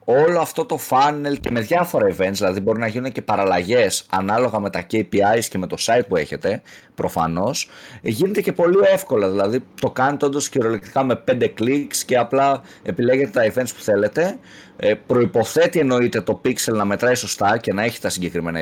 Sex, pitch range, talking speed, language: male, 95-145 Hz, 185 wpm, Greek